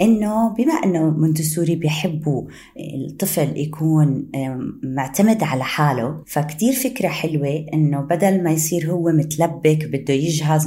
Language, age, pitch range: Arabic, 20-39, 145-170 Hz